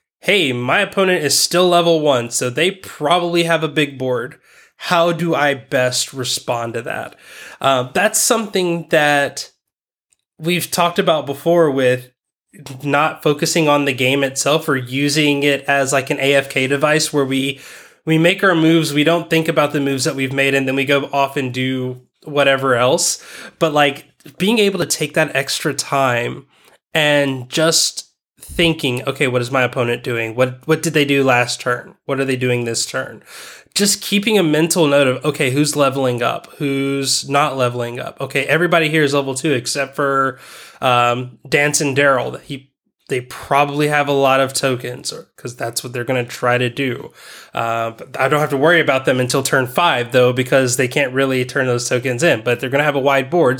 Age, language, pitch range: 20-39, English, 130-160 Hz